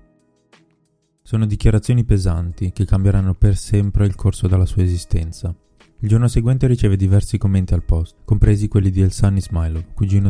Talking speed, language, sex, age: 150 wpm, Italian, male, 20-39